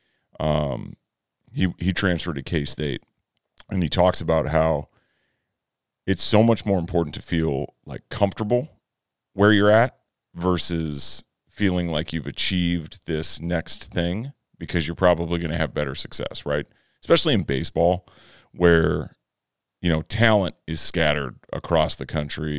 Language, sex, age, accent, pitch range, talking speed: English, male, 40-59, American, 80-95 Hz, 140 wpm